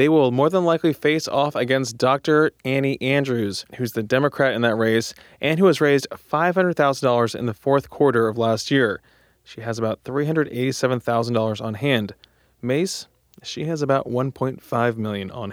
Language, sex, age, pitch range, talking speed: English, male, 20-39, 120-145 Hz, 160 wpm